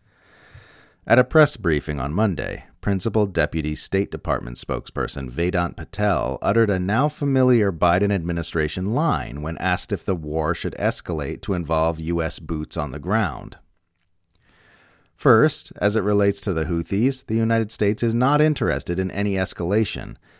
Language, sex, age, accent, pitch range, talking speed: English, male, 40-59, American, 85-110 Hz, 145 wpm